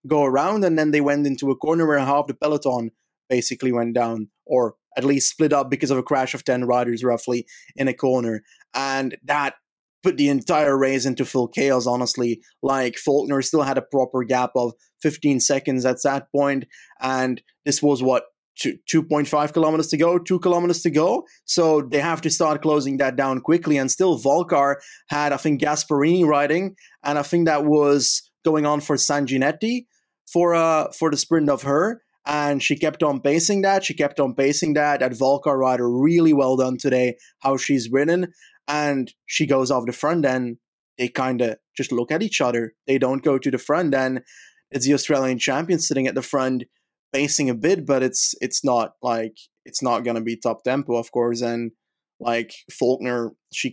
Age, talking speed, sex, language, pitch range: 20-39, 190 wpm, male, English, 125-150 Hz